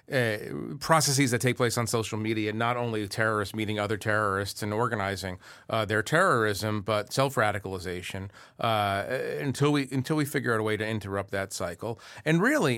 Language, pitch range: English, 105-130 Hz